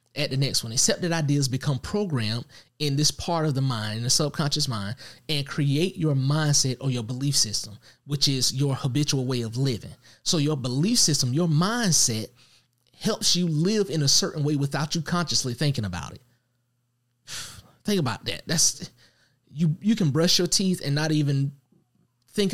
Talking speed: 180 wpm